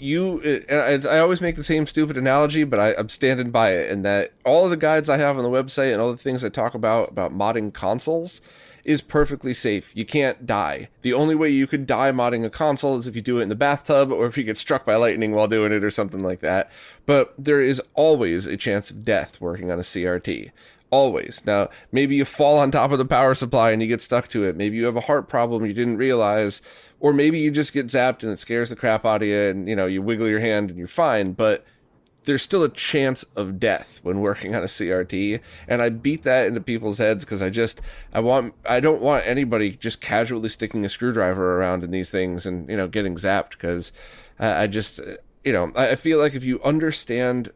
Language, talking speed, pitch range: English, 235 wpm, 105-140 Hz